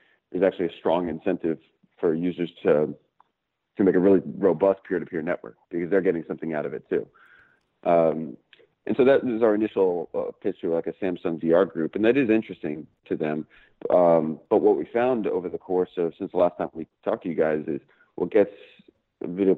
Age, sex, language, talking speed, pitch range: 40-59, male, English, 200 wpm, 80-95 Hz